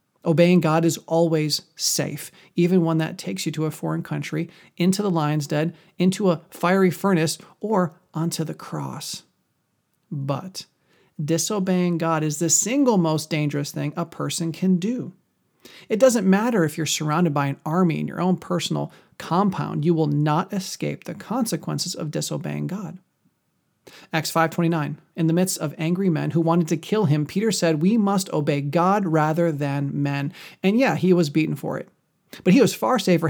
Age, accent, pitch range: 40-59, American, 155-185 Hz